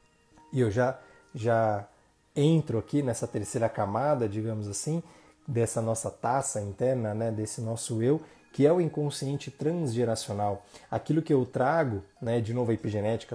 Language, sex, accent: Portuguese, male, Brazilian